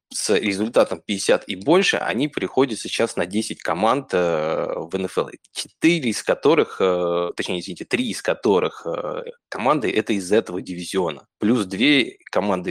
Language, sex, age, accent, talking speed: Russian, male, 20-39, native, 130 wpm